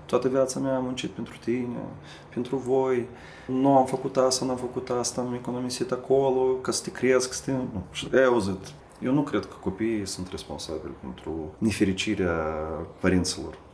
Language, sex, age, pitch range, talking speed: Romanian, male, 30-49, 95-125 Hz, 155 wpm